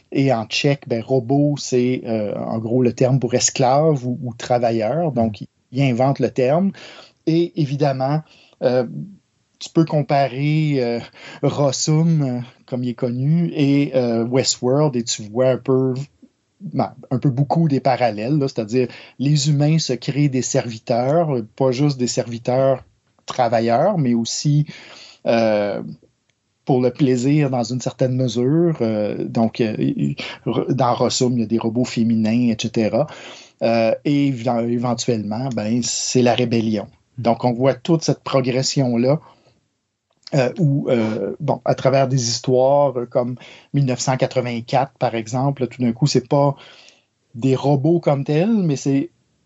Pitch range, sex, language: 120-145 Hz, male, French